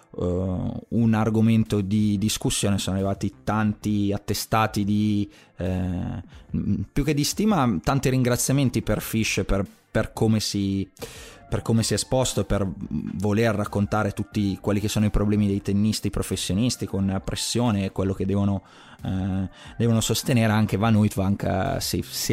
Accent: native